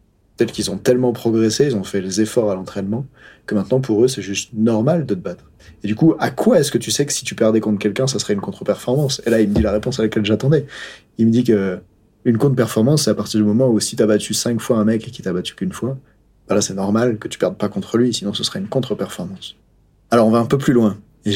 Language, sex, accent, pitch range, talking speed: French, male, French, 105-125 Hz, 285 wpm